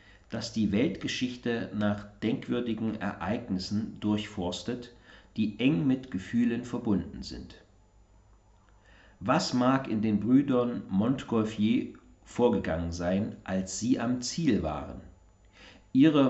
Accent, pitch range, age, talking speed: German, 95-115 Hz, 50-69, 100 wpm